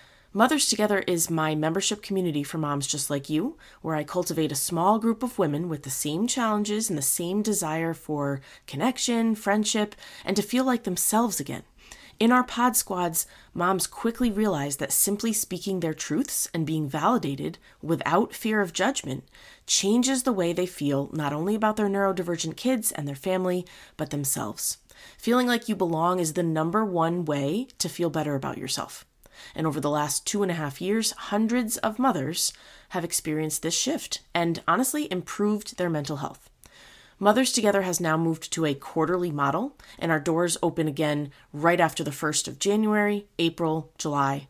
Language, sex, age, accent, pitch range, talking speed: English, female, 20-39, American, 155-220 Hz, 175 wpm